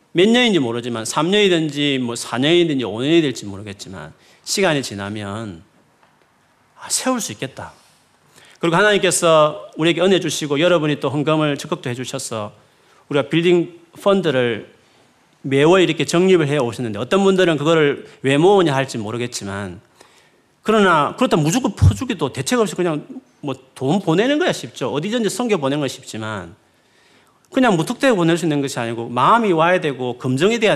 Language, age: Korean, 40-59